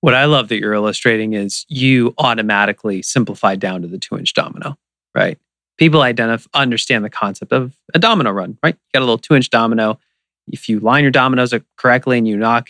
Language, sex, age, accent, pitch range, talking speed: English, male, 30-49, American, 105-125 Hz, 195 wpm